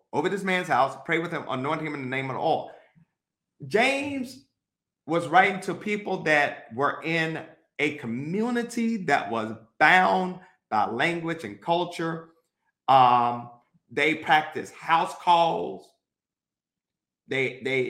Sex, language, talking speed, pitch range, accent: male, English, 125 wpm, 145-175 Hz, American